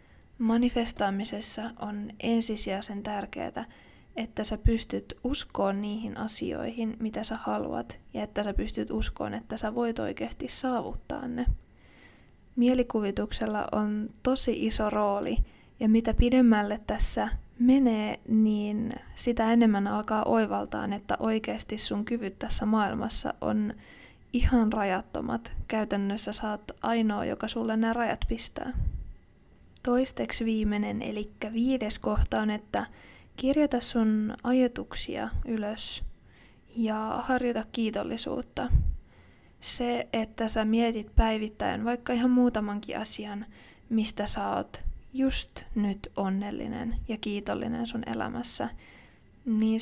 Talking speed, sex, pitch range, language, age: 110 wpm, female, 210-240 Hz, Finnish, 20-39